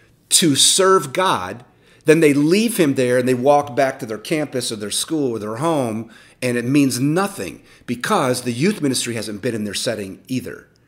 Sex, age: male, 40-59